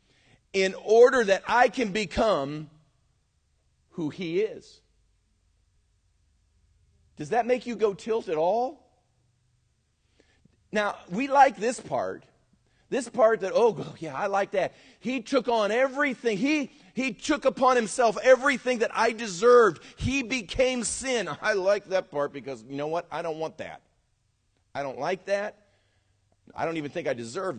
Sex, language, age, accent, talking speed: male, English, 40-59, American, 150 wpm